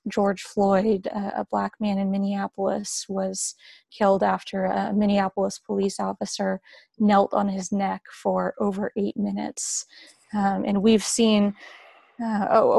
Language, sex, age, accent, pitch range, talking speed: English, female, 20-39, American, 195-220 Hz, 125 wpm